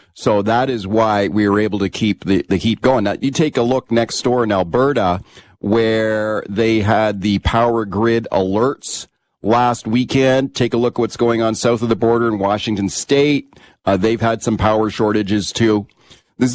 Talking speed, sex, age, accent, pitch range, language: 190 wpm, male, 40-59, American, 105-135 Hz, English